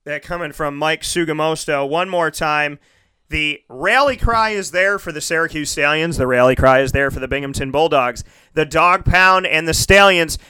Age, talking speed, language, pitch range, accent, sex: 30-49, 185 wpm, English, 140-175 Hz, American, male